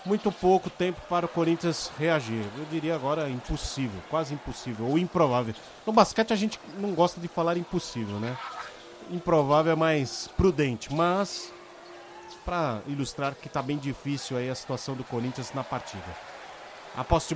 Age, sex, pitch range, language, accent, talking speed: 30-49, male, 145-190 Hz, Portuguese, Brazilian, 150 wpm